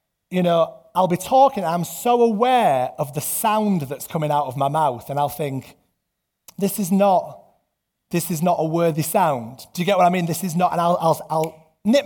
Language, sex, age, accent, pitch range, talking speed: English, male, 30-49, British, 160-225 Hz, 220 wpm